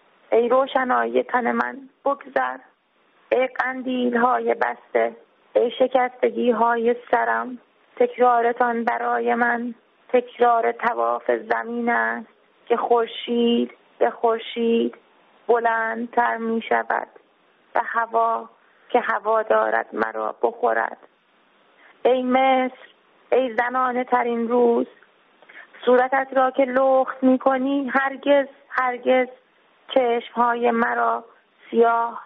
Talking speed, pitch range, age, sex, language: 95 wpm, 225-250 Hz, 30-49, female, Persian